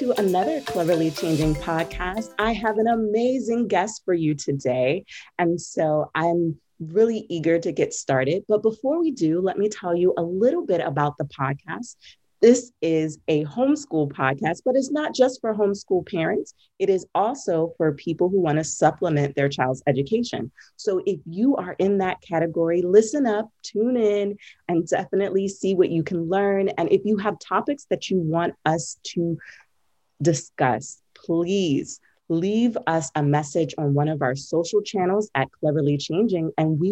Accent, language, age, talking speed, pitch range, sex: American, English, 30-49, 170 wpm, 155-215 Hz, female